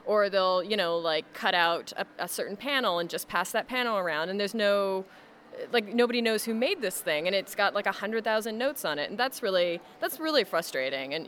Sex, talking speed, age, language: female, 235 wpm, 20-39, Swedish